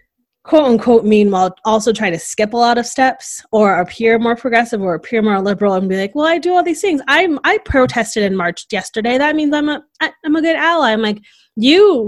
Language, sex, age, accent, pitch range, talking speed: English, female, 20-39, American, 190-240 Hz, 225 wpm